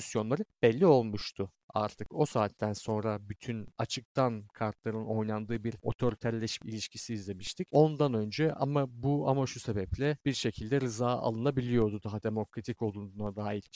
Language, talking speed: Turkish, 125 wpm